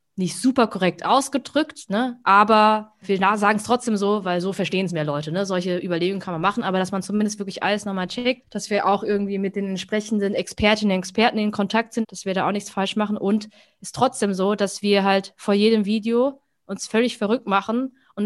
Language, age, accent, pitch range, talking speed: German, 20-39, German, 185-225 Hz, 220 wpm